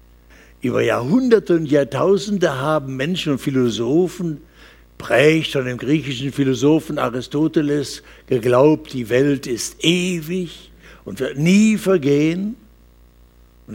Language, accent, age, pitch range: German, German, 60-79, 125-175 Hz